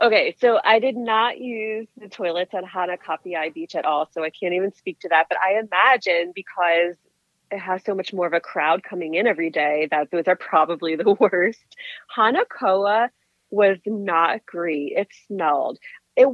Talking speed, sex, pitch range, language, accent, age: 180 wpm, female, 170-225 Hz, English, American, 30-49